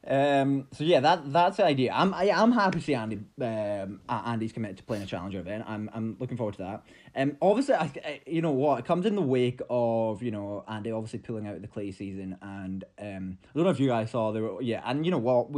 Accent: British